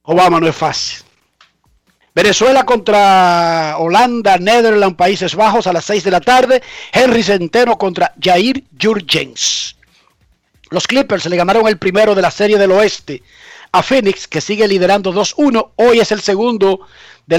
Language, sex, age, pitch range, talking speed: Spanish, male, 50-69, 185-235 Hz, 150 wpm